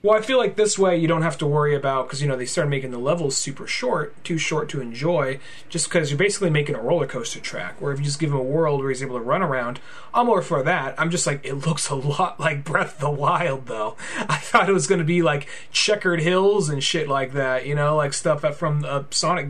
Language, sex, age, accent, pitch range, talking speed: English, male, 30-49, American, 135-165 Hz, 270 wpm